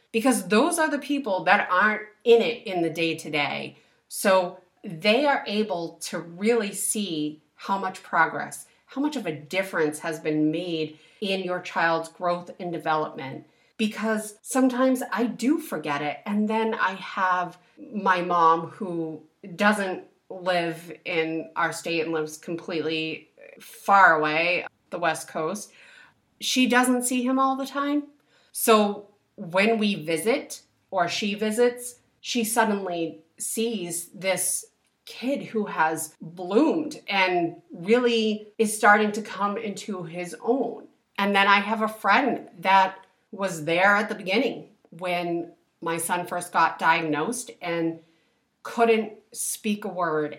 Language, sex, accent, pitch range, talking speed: English, female, American, 170-220 Hz, 140 wpm